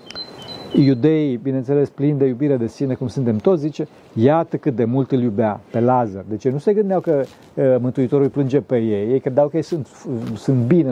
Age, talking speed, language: 50-69, 205 wpm, Romanian